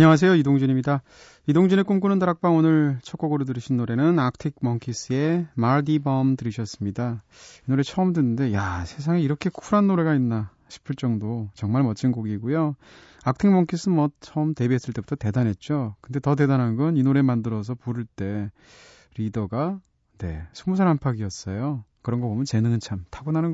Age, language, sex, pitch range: 30-49, Korean, male, 110-155 Hz